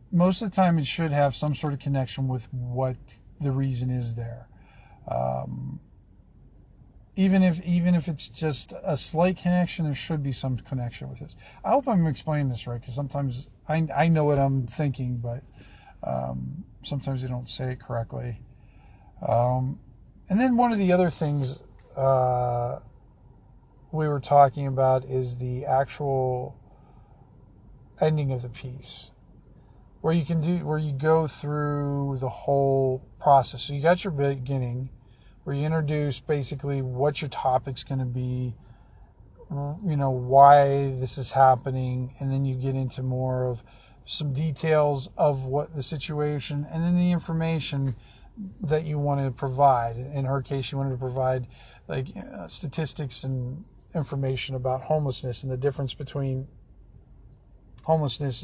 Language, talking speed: English, 155 wpm